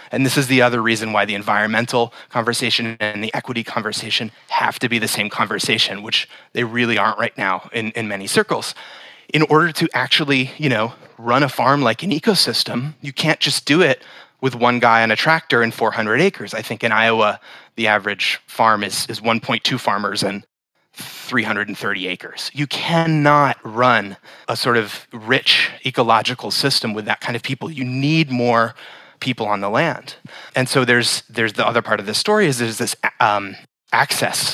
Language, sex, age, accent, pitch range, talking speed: English, male, 30-49, American, 110-130 Hz, 185 wpm